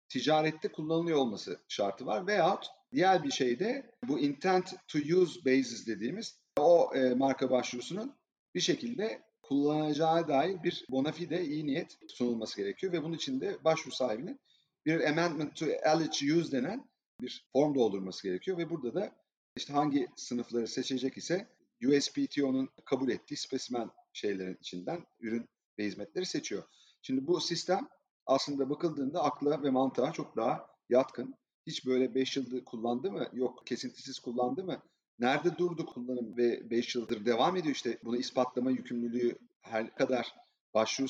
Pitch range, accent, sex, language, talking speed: 120-160 Hz, native, male, Turkish, 145 wpm